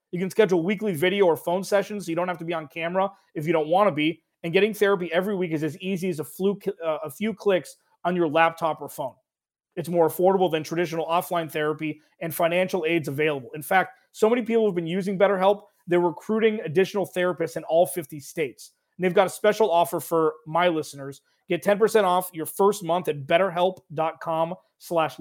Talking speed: 205 wpm